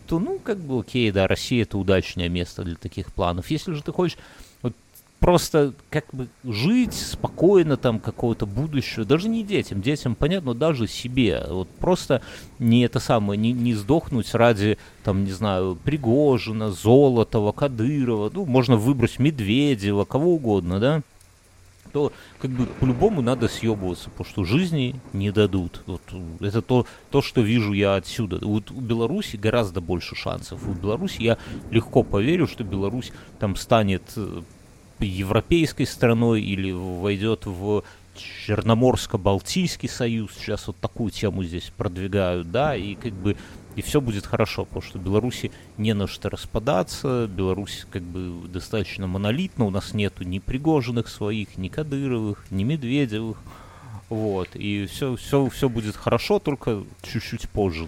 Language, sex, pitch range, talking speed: Russian, male, 95-125 Hz, 145 wpm